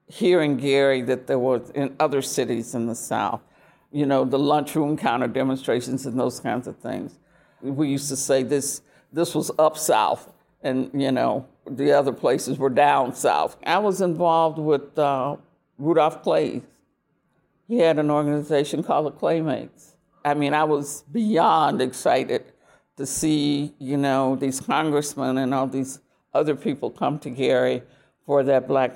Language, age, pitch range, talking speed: English, 60-79, 130-155 Hz, 160 wpm